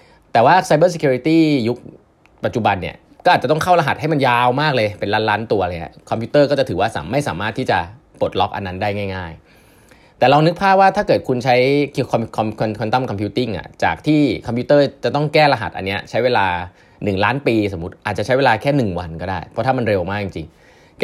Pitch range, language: 95-135 Hz, Thai